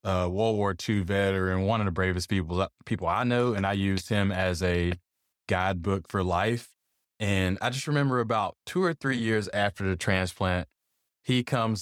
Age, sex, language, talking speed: 20-39, male, English, 185 wpm